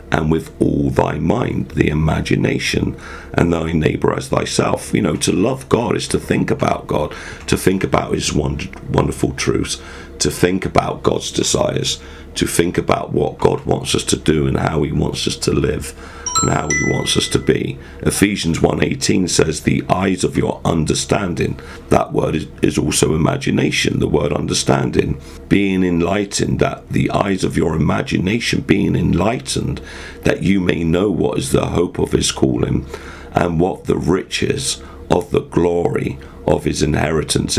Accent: British